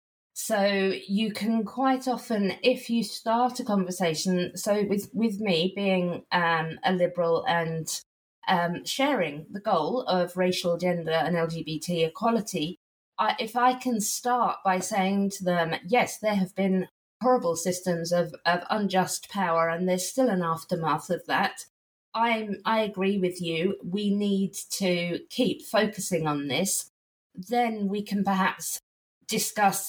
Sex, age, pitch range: female, 20-39, 170-205 Hz